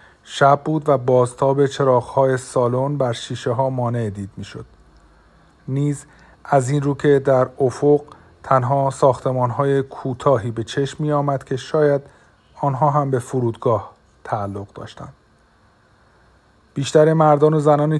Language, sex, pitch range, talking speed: Persian, male, 125-145 Hz, 125 wpm